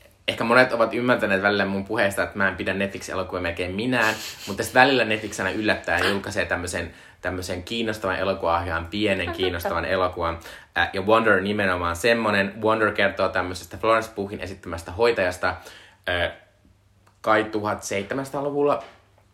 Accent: native